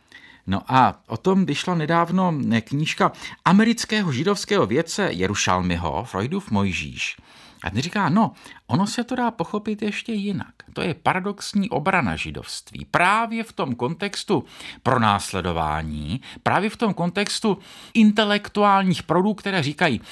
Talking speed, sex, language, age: 125 wpm, male, Czech, 50-69